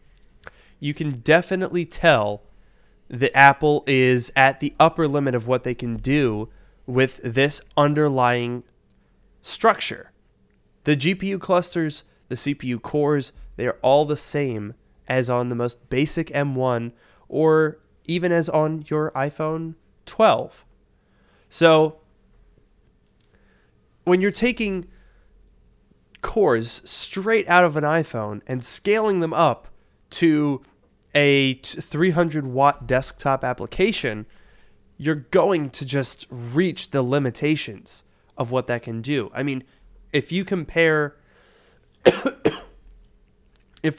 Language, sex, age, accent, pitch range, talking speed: English, male, 20-39, American, 125-160 Hz, 110 wpm